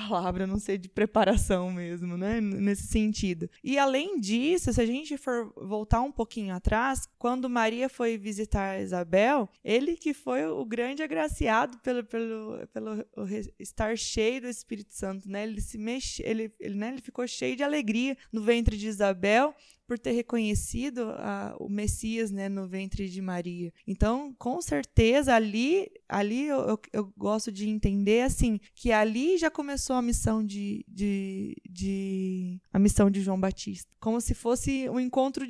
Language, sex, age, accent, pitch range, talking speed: Portuguese, female, 20-39, Brazilian, 200-255 Hz, 155 wpm